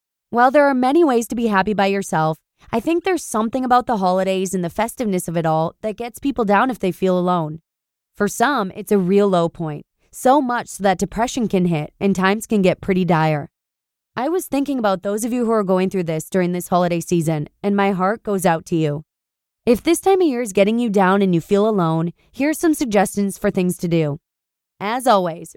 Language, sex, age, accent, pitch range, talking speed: English, female, 20-39, American, 175-235 Hz, 225 wpm